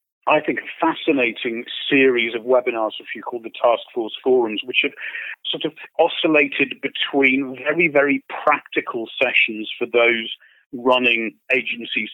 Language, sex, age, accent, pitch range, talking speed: English, male, 40-59, British, 115-140 Hz, 145 wpm